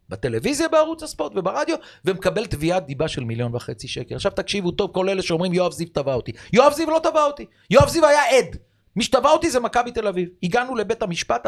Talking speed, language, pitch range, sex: 210 wpm, Hebrew, 135-225 Hz, male